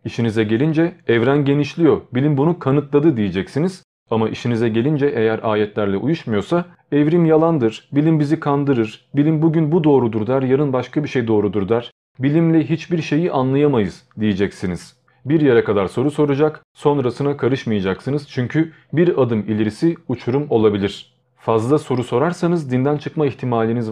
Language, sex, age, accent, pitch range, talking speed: Turkish, male, 40-59, native, 120-155 Hz, 135 wpm